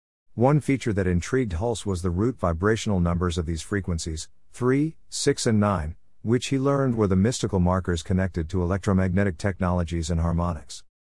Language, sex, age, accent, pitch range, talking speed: English, male, 50-69, American, 90-115 Hz, 160 wpm